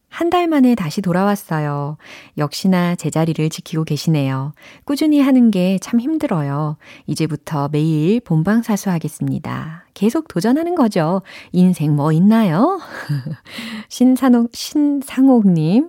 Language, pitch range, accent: Korean, 150-215 Hz, native